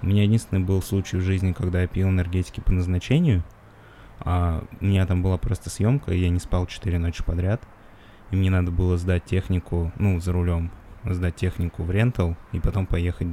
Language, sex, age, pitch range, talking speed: Russian, male, 20-39, 85-100 Hz, 195 wpm